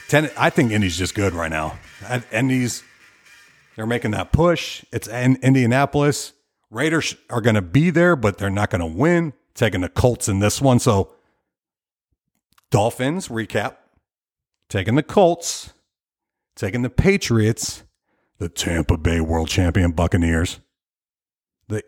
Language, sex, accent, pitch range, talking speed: English, male, American, 100-145 Hz, 130 wpm